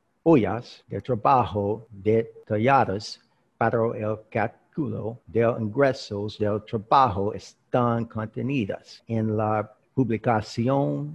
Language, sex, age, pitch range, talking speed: English, male, 60-79, 105-125 Hz, 85 wpm